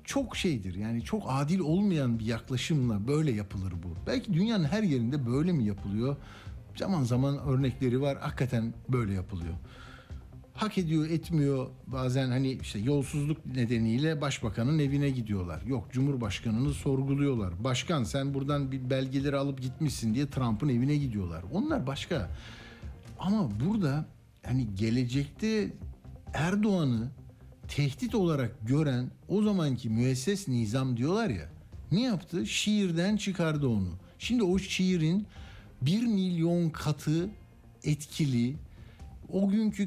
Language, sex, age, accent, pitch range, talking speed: Turkish, male, 60-79, native, 115-160 Hz, 120 wpm